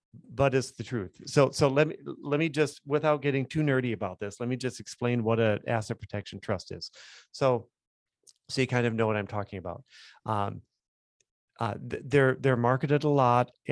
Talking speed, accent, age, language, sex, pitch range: 195 wpm, American, 40-59, English, male, 110-135 Hz